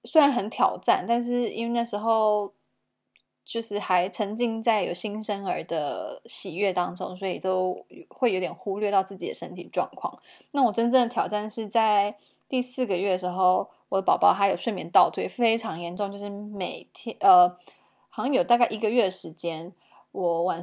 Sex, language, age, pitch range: female, Chinese, 20-39, 195-245 Hz